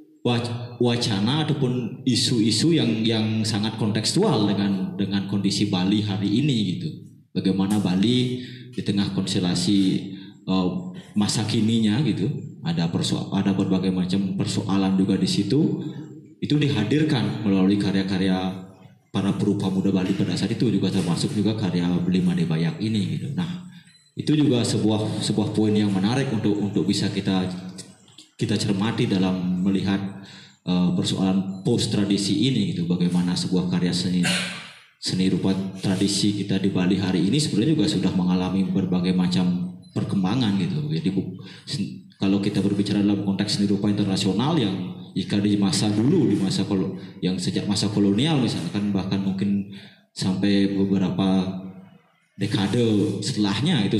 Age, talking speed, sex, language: 20-39, 140 wpm, male, Indonesian